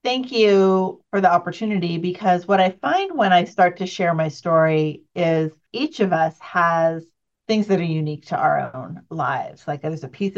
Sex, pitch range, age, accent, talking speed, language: female, 155-185 Hz, 40-59, American, 190 wpm, English